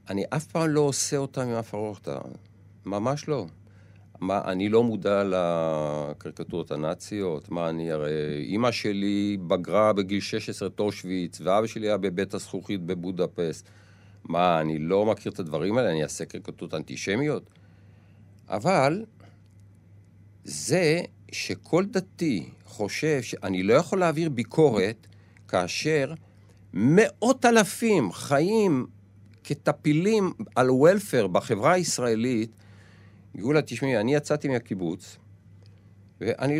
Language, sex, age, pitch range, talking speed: Hebrew, male, 50-69, 100-130 Hz, 115 wpm